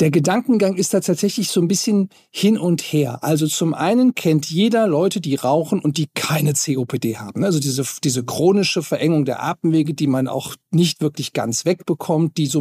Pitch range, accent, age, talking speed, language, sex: 145-185 Hz, German, 50-69, 190 wpm, German, male